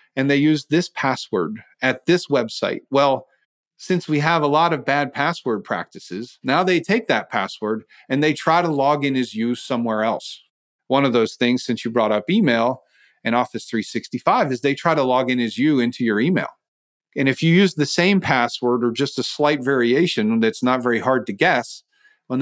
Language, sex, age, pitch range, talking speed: English, male, 40-59, 120-150 Hz, 200 wpm